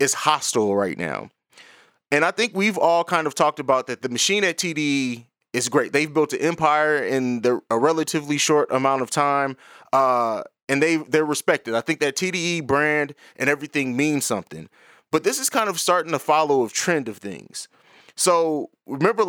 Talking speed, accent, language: 190 wpm, American, English